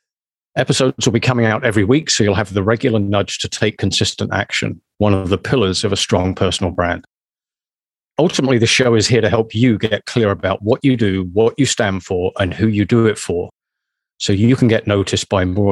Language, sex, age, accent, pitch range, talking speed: English, male, 40-59, British, 100-120 Hz, 220 wpm